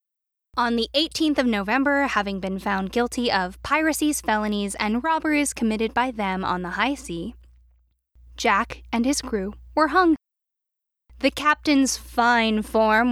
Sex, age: female, 10-29